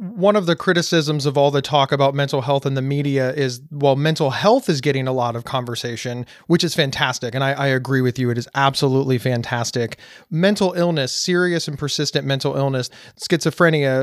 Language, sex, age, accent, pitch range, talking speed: English, male, 30-49, American, 135-165 Hz, 195 wpm